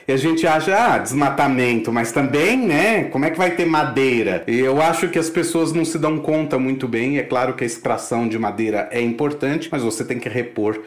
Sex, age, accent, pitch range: male, 40-59, Brazilian, 115-155 Hz